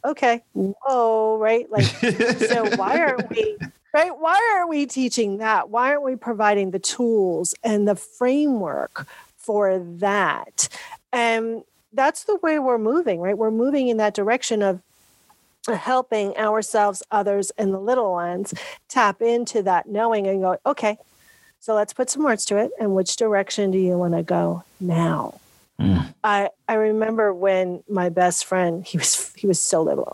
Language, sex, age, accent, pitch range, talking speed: English, female, 40-59, American, 190-245 Hz, 160 wpm